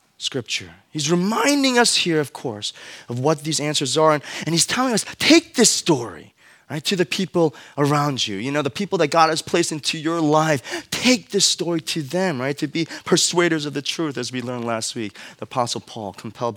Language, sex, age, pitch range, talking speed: English, male, 20-39, 135-205 Hz, 210 wpm